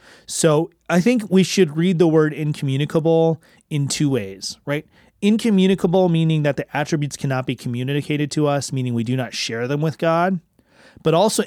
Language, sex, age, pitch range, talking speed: English, male, 30-49, 125-170 Hz, 175 wpm